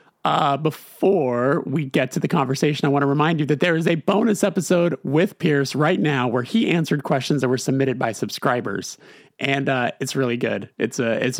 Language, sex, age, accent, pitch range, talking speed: English, male, 30-49, American, 125-155 Hz, 205 wpm